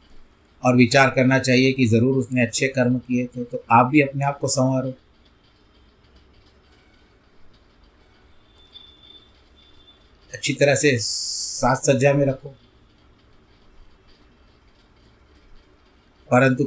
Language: Hindi